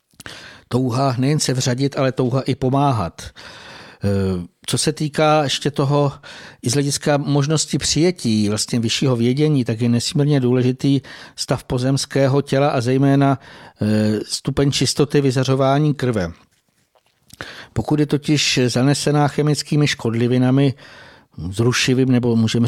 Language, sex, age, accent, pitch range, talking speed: Czech, male, 60-79, native, 120-140 Hz, 110 wpm